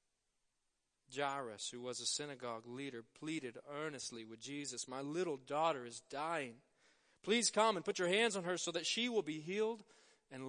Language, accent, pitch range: English, American, 135-175 Hz